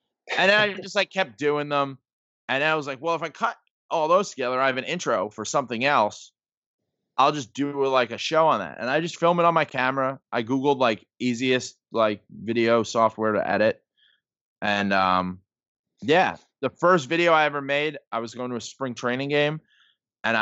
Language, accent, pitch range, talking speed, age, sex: English, American, 110-140 Hz, 205 wpm, 20-39, male